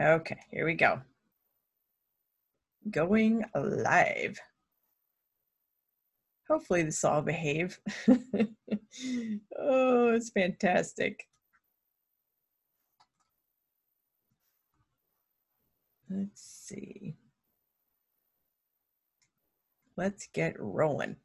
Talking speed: 55 wpm